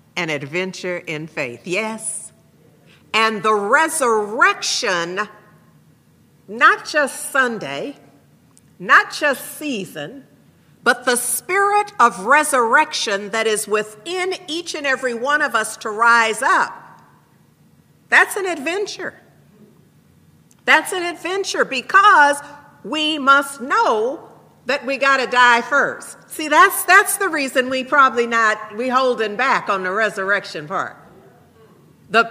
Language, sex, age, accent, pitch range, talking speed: English, female, 50-69, American, 220-310 Hz, 115 wpm